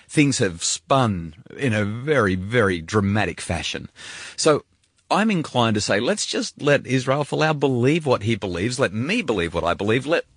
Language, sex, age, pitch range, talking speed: English, male, 30-49, 105-150 Hz, 175 wpm